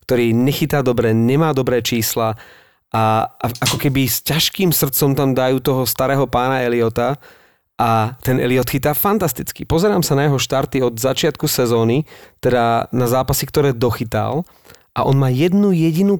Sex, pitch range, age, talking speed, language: male, 120-140 Hz, 30-49, 150 wpm, Slovak